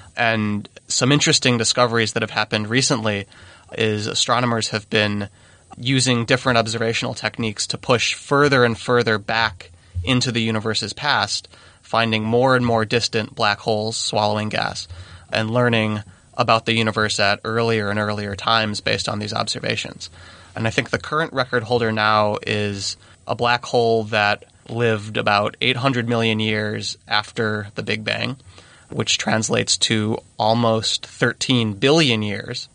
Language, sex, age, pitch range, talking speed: English, male, 20-39, 105-120 Hz, 145 wpm